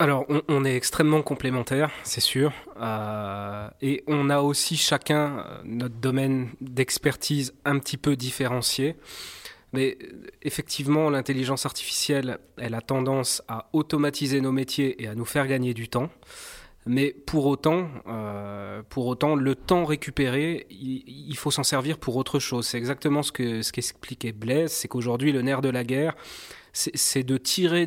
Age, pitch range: 20-39, 125-150 Hz